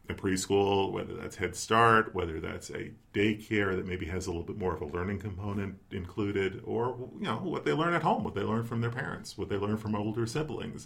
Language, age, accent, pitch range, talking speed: English, 40-59, American, 90-110 Hz, 225 wpm